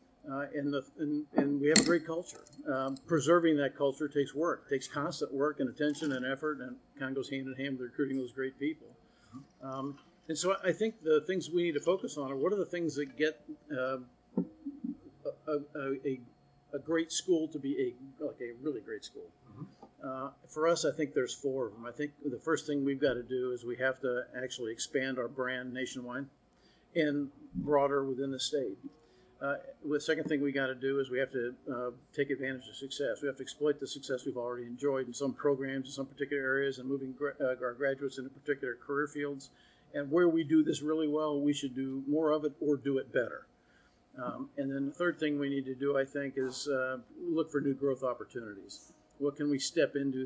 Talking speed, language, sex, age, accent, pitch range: 215 wpm, English, male, 50-69, American, 130-150 Hz